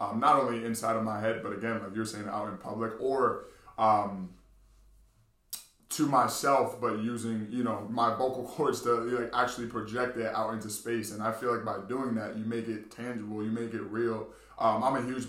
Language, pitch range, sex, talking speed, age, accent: English, 105-120 Hz, male, 210 wpm, 20-39, American